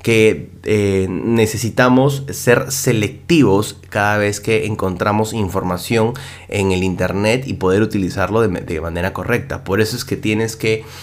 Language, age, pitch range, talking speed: Spanish, 20-39, 100-125 Hz, 140 wpm